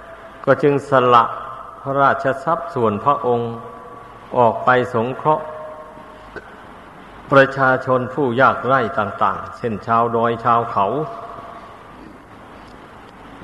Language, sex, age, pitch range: Thai, male, 60-79, 115-135 Hz